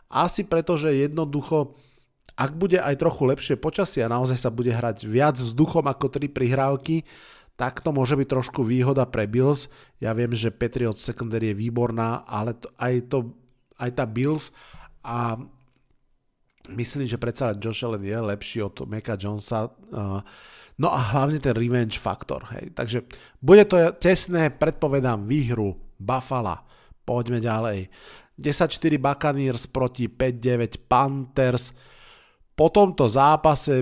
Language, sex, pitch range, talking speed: Slovak, male, 120-140 Hz, 135 wpm